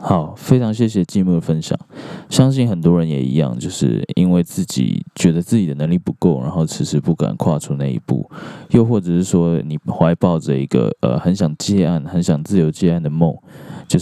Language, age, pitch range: Chinese, 20-39, 80-95 Hz